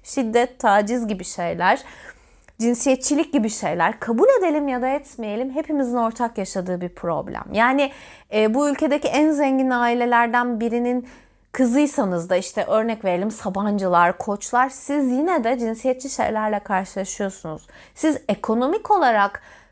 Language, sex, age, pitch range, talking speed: Turkish, female, 30-49, 230-300 Hz, 125 wpm